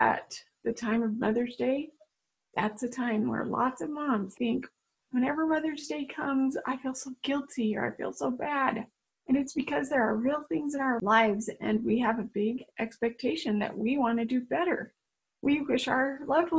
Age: 30-49